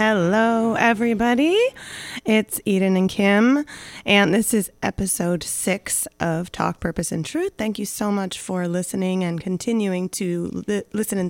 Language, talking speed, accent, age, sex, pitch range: English, 145 wpm, American, 30-49, female, 170-205 Hz